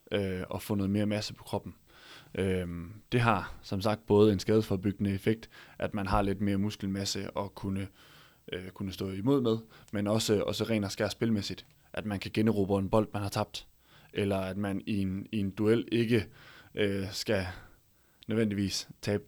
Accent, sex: native, male